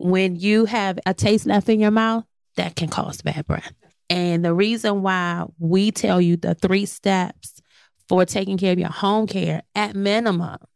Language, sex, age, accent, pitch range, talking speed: English, female, 20-39, American, 180-215 Hz, 185 wpm